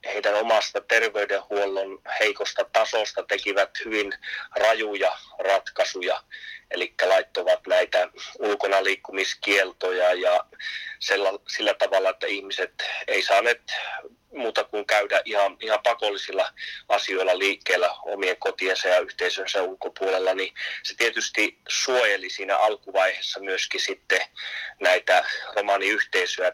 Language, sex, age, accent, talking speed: Finnish, male, 30-49, native, 95 wpm